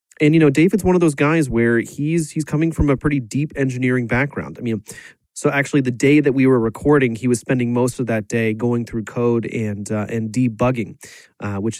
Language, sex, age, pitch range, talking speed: English, male, 30-49, 115-145 Hz, 225 wpm